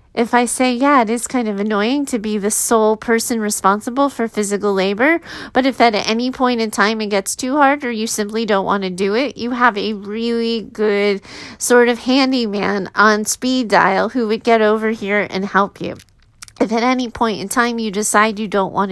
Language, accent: English, American